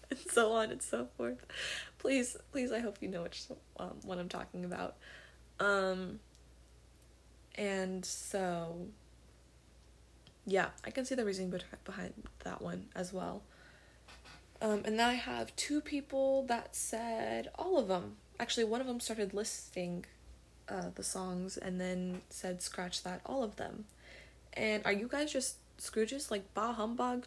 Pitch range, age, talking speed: 175-235 Hz, 20-39, 155 wpm